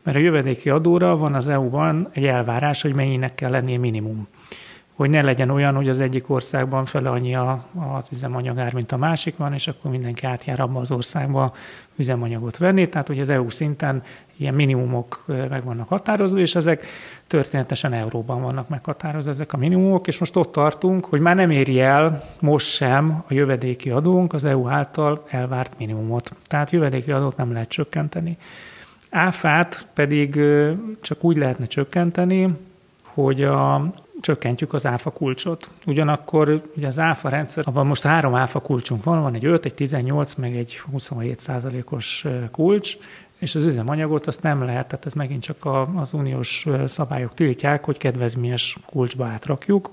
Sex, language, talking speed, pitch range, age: male, Hungarian, 165 wpm, 130-155 Hz, 30-49